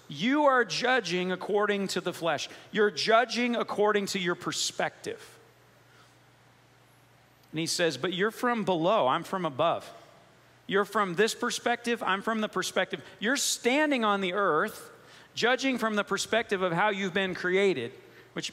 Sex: male